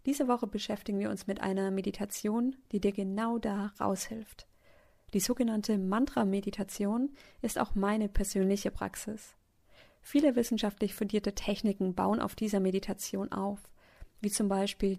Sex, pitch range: female, 200-240 Hz